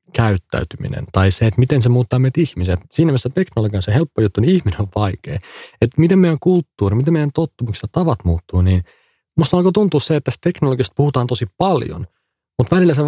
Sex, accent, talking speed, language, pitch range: male, native, 200 wpm, Finnish, 95-140 Hz